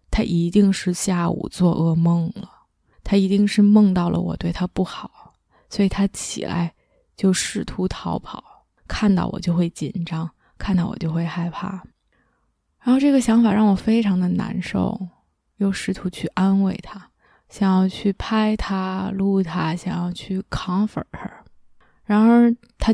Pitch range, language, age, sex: 175-210 Hz, Chinese, 20-39, female